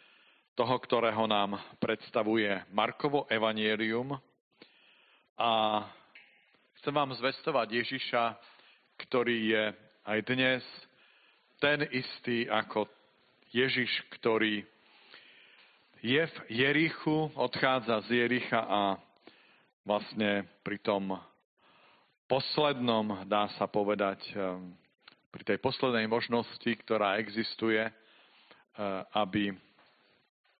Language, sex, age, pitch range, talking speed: Slovak, male, 50-69, 100-120 Hz, 80 wpm